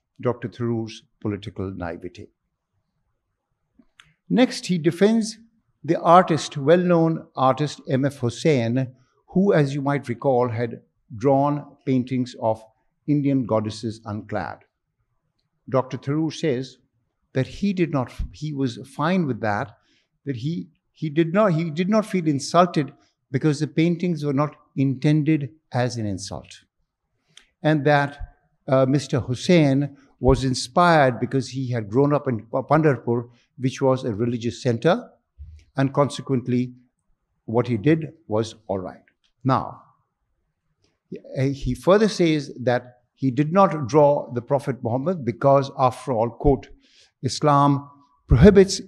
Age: 60-79